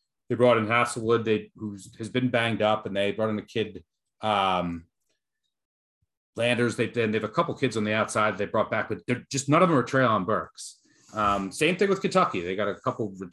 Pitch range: 100-125 Hz